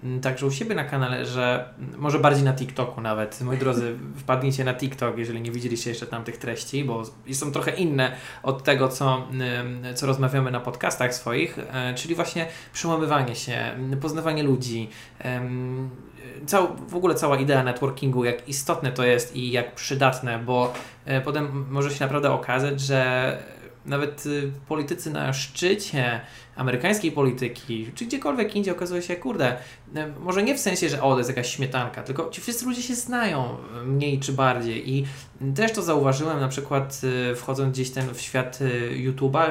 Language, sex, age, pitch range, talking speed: Polish, male, 20-39, 120-140 Hz, 160 wpm